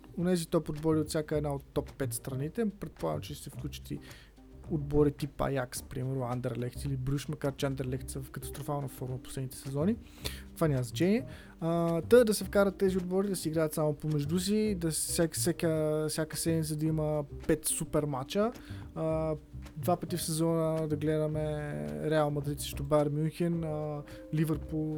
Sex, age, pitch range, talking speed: male, 20-39, 145-170 Hz, 160 wpm